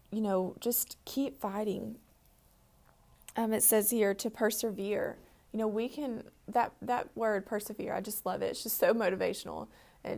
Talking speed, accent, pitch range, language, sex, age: 165 wpm, American, 190-225 Hz, English, female, 20-39